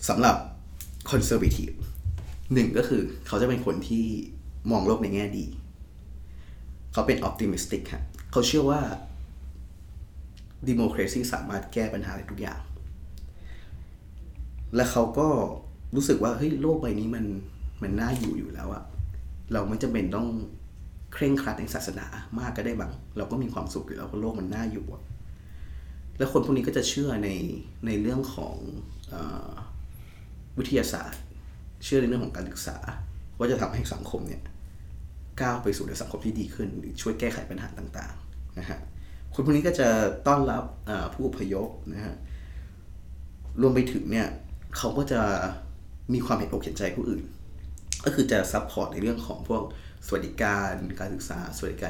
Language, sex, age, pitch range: Thai, male, 20-39, 70-105 Hz